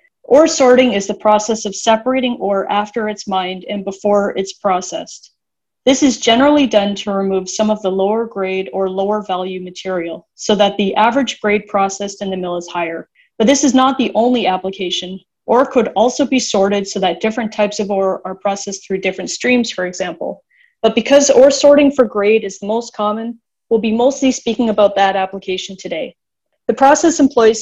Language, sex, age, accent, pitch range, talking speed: English, female, 30-49, American, 195-235 Hz, 190 wpm